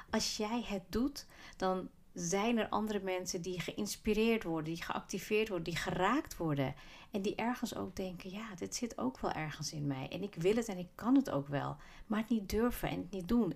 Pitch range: 175-210 Hz